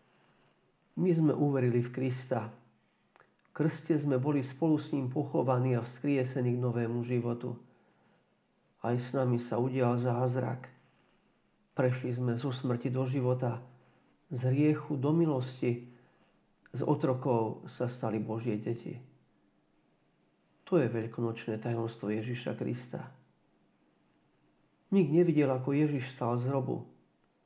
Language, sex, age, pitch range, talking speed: Slovak, male, 50-69, 120-145 Hz, 115 wpm